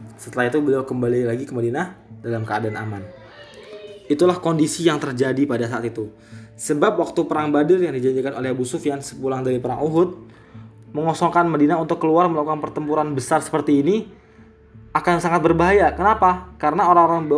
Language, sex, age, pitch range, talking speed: Indonesian, male, 20-39, 120-155 Hz, 155 wpm